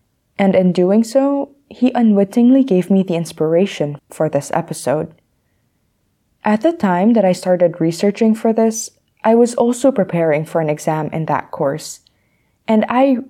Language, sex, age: English, female, 20-39